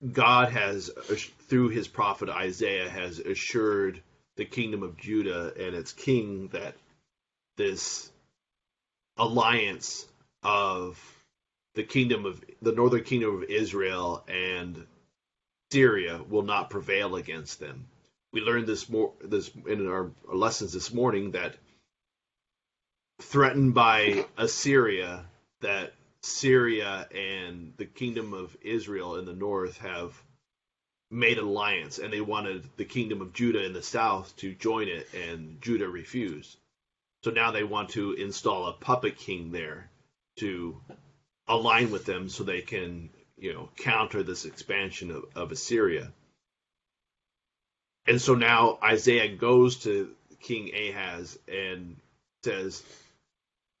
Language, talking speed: English, 125 wpm